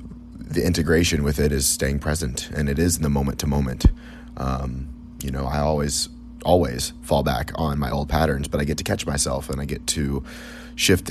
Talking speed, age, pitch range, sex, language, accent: 205 wpm, 30-49, 70-85 Hz, male, English, American